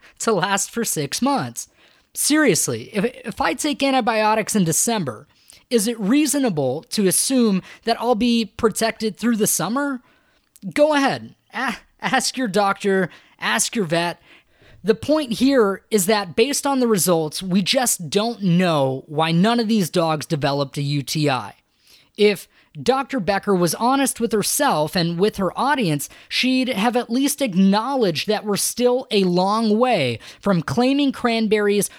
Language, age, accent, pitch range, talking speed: English, 20-39, American, 165-235 Hz, 150 wpm